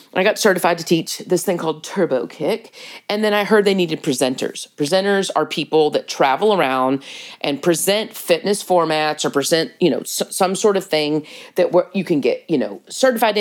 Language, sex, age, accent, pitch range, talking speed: English, female, 40-59, American, 145-195 Hz, 195 wpm